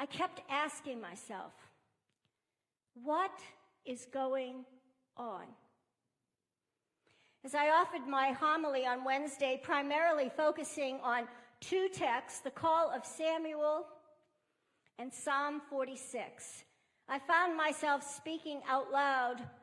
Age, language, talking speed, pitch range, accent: 50-69, English, 100 wpm, 260-310 Hz, American